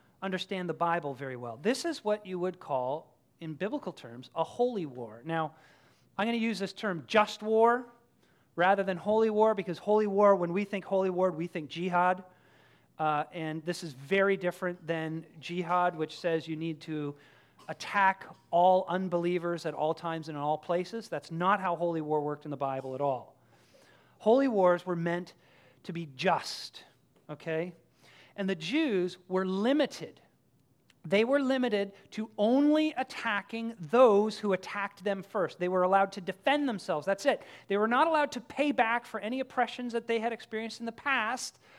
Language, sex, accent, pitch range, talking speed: English, male, American, 170-230 Hz, 180 wpm